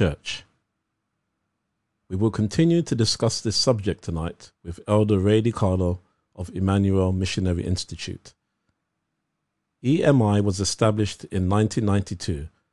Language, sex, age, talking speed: English, male, 50-69, 105 wpm